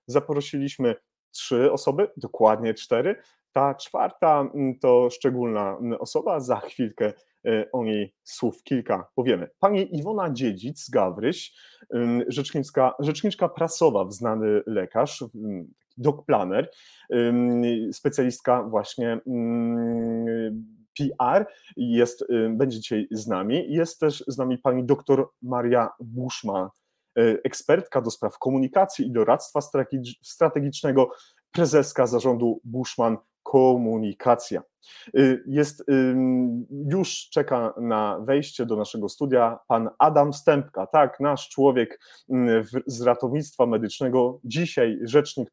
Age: 30-49